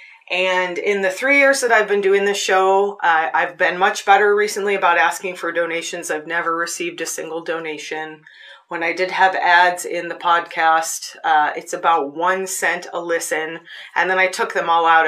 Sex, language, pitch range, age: female, English, 165-200 Hz, 30-49